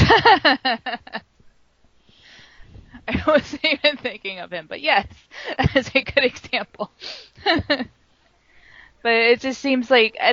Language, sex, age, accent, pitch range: English, female, 20-39, American, 180-240 Hz